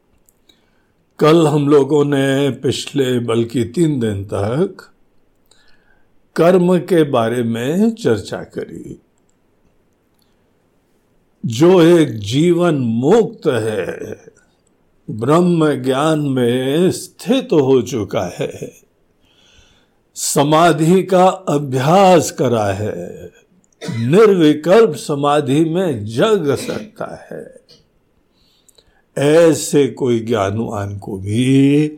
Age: 60-79